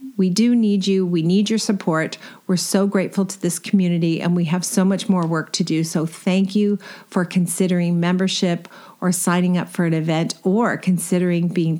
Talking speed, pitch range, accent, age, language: 195 wpm, 170-215 Hz, American, 50-69, English